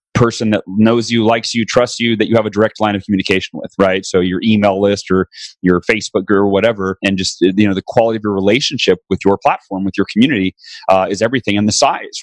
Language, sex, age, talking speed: English, male, 30-49, 235 wpm